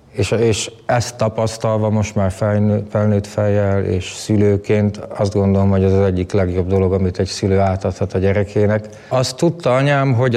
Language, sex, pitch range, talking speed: Hungarian, male, 95-105 Hz, 170 wpm